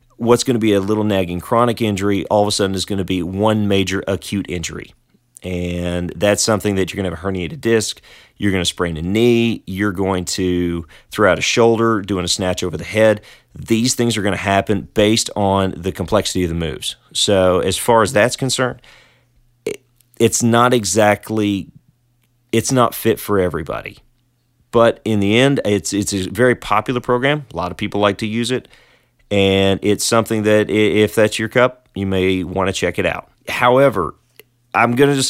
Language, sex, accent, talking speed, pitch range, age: English, male, American, 195 wpm, 95-120 Hz, 30-49